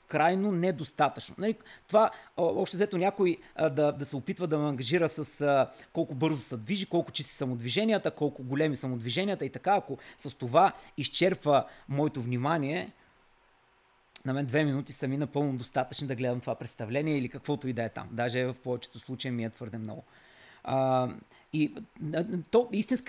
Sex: male